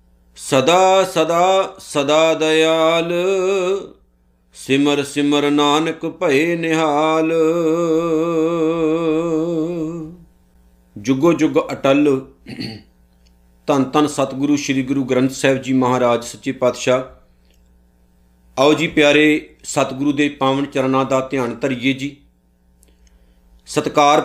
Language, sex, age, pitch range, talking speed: Punjabi, male, 50-69, 100-155 Hz, 85 wpm